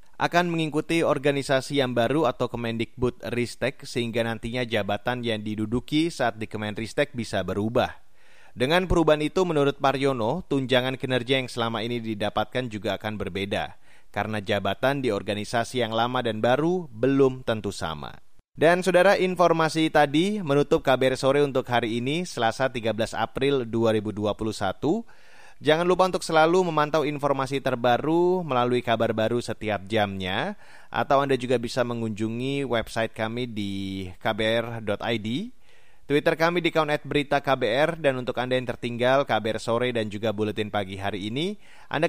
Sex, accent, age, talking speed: male, native, 30-49, 145 wpm